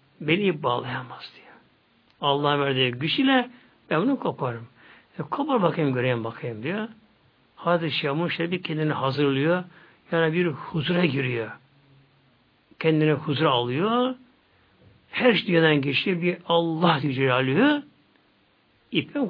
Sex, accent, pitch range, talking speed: male, native, 140-215 Hz, 110 wpm